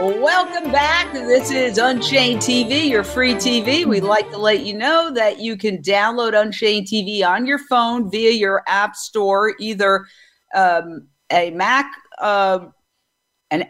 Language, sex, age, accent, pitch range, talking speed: English, female, 50-69, American, 195-245 Hz, 150 wpm